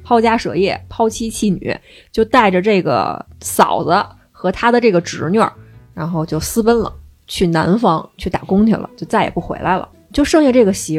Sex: female